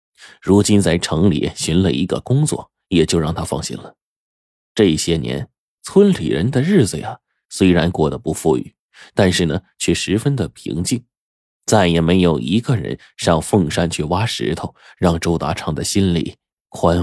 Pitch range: 85-120 Hz